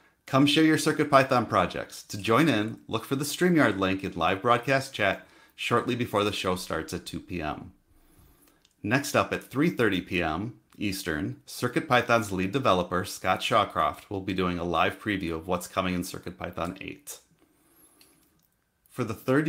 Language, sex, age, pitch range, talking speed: English, male, 30-49, 95-130 Hz, 155 wpm